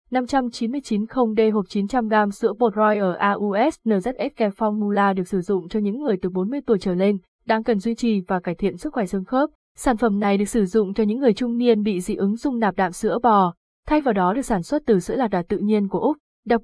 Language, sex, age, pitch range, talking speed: Vietnamese, female, 20-39, 200-240 Hz, 240 wpm